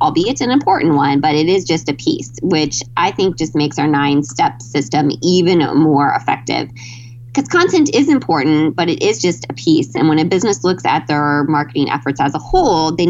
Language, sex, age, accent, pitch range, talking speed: English, female, 20-39, American, 135-180 Hz, 200 wpm